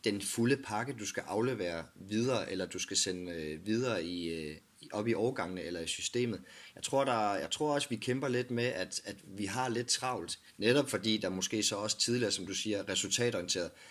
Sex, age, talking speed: male, 30-49, 200 wpm